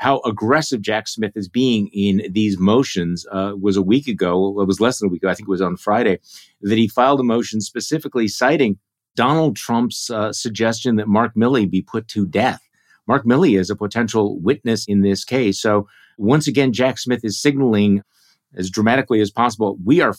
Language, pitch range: English, 100-125 Hz